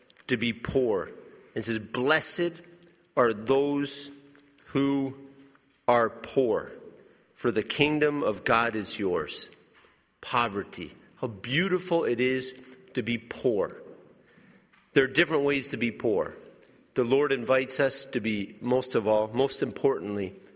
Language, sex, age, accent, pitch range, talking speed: English, male, 50-69, American, 120-155 Hz, 130 wpm